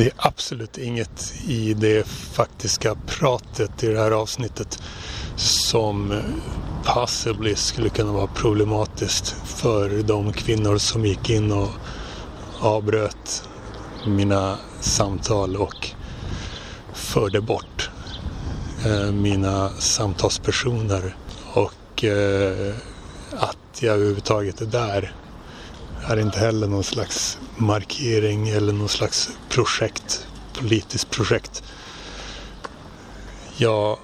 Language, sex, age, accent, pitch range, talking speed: Swedish, male, 30-49, native, 95-110 Hz, 95 wpm